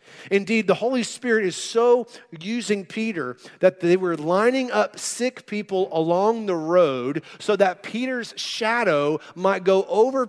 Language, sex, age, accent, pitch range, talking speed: English, male, 40-59, American, 170-220 Hz, 145 wpm